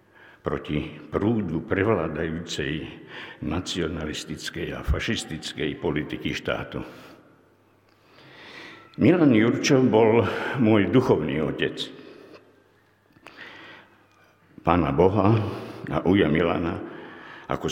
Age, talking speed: 60-79, 70 wpm